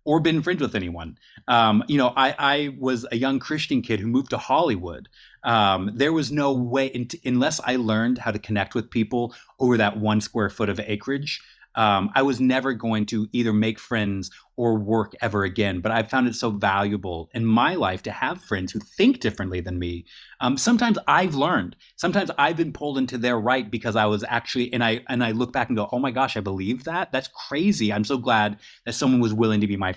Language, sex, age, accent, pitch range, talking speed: English, male, 30-49, American, 100-130 Hz, 220 wpm